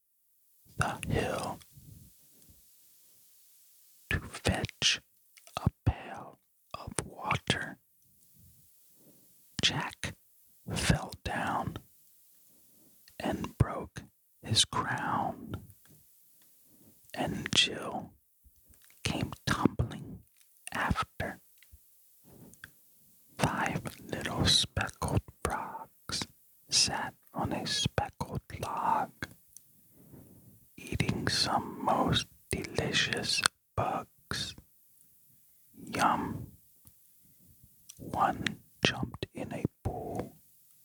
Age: 40-59